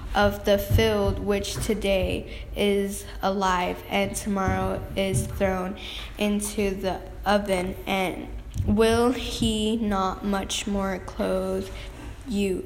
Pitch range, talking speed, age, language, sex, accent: 195-220 Hz, 105 wpm, 10-29, English, female, American